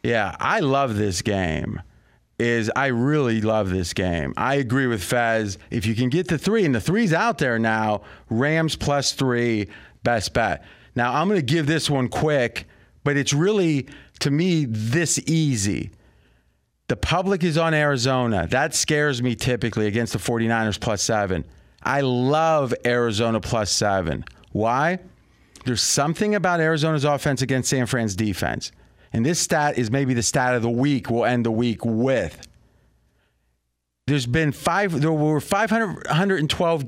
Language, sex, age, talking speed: English, male, 30-49, 160 wpm